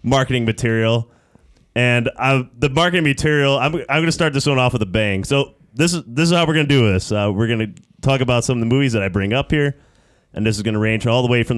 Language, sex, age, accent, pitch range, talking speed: English, male, 20-39, American, 100-135 Hz, 275 wpm